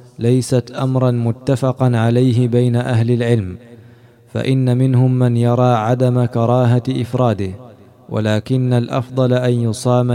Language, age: Arabic, 20-39